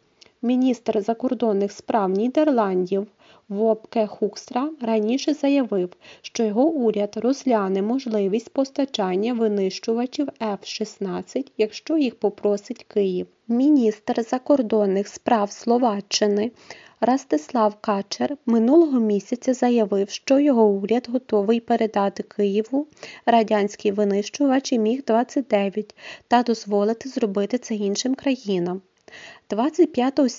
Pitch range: 210-260 Hz